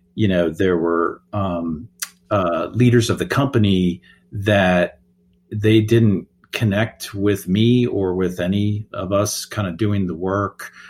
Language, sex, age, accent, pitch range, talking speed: English, male, 50-69, American, 90-110 Hz, 145 wpm